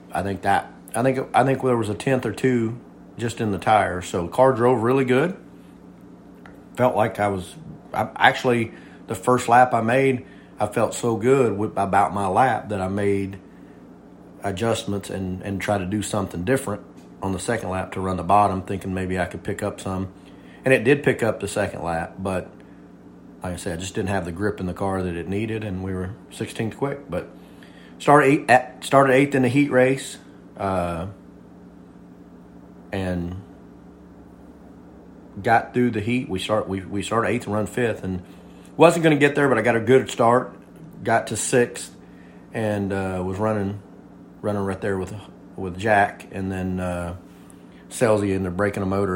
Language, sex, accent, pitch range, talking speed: English, male, American, 95-115 Hz, 190 wpm